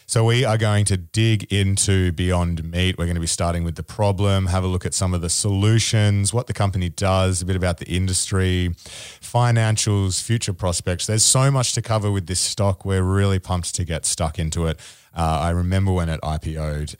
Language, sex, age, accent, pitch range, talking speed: English, male, 30-49, Australian, 85-105 Hz, 210 wpm